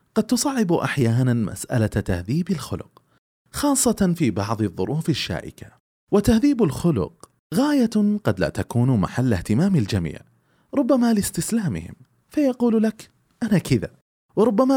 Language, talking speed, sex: Arabic, 110 wpm, male